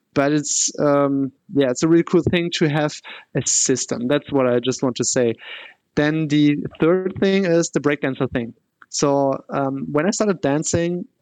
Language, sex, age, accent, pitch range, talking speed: English, male, 20-39, German, 135-165 Hz, 180 wpm